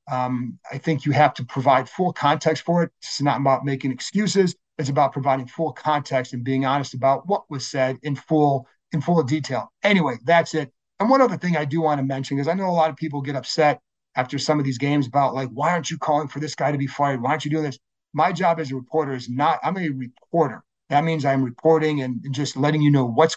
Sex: male